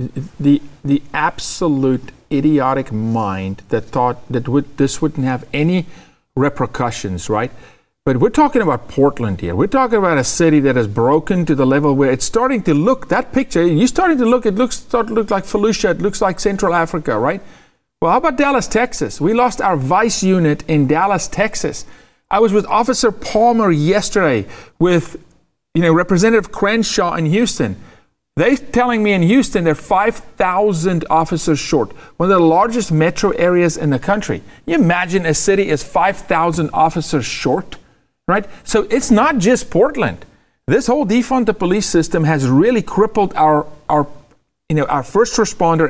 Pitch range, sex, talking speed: 145-220 Hz, male, 170 wpm